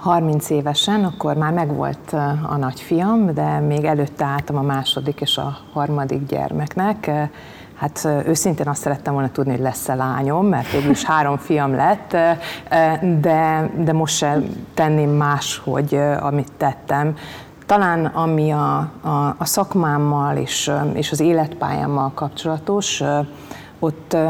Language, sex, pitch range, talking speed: Hungarian, female, 145-165 Hz, 130 wpm